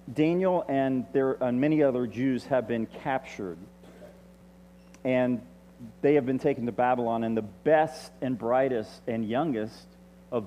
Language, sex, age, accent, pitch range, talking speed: English, male, 40-59, American, 100-145 Hz, 145 wpm